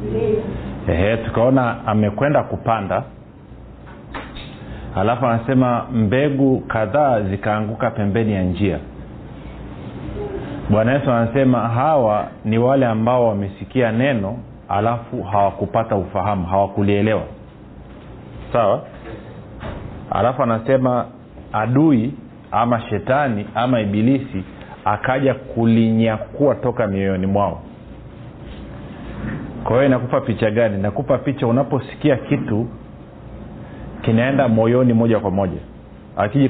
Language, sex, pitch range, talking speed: Swahili, male, 100-125 Hz, 85 wpm